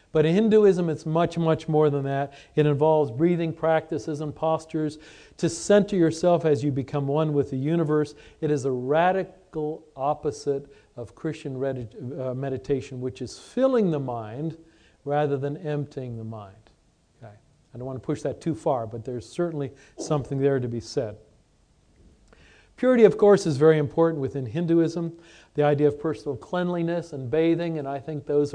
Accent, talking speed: American, 165 wpm